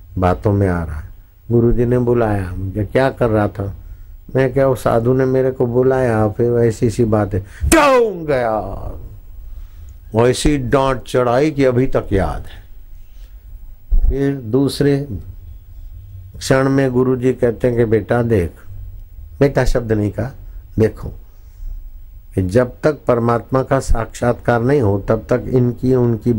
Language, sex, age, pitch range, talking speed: Hindi, male, 60-79, 95-125 Hz, 145 wpm